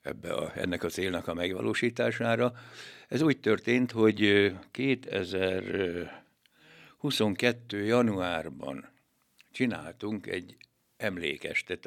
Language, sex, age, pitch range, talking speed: Hungarian, male, 60-79, 100-120 Hz, 80 wpm